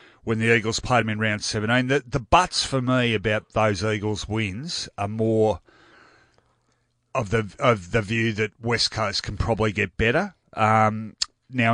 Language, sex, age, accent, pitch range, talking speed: English, male, 30-49, Australian, 95-115 Hz, 170 wpm